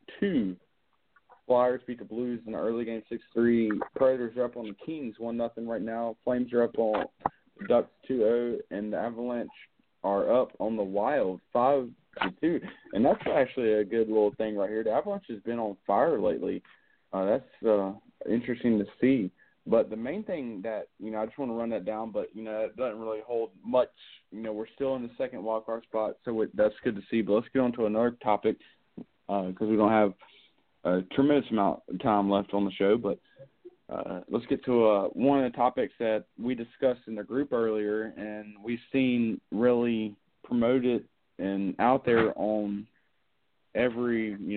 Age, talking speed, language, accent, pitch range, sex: 20-39, 195 wpm, English, American, 105-125 Hz, male